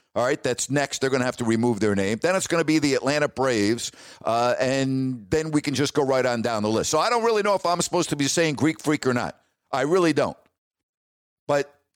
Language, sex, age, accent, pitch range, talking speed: English, male, 50-69, American, 125-160 Hz, 255 wpm